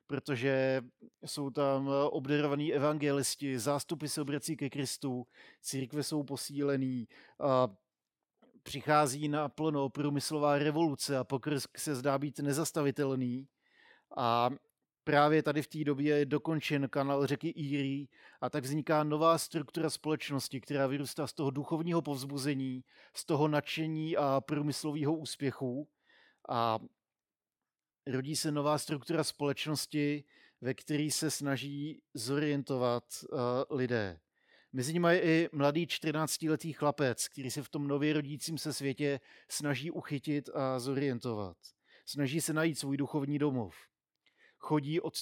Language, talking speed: Czech, 120 wpm